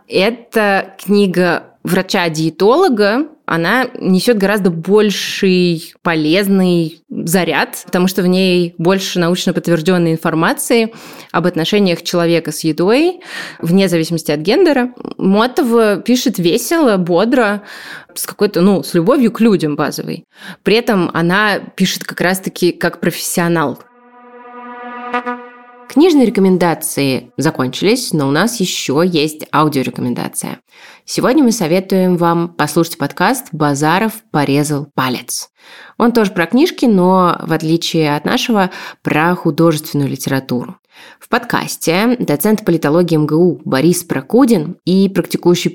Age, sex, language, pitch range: 20-39, female, Russian, 165-215 Hz